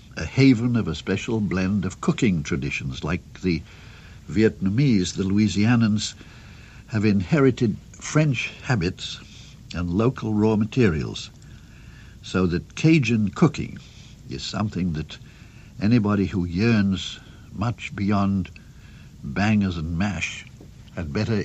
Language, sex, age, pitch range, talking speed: English, male, 60-79, 95-120 Hz, 110 wpm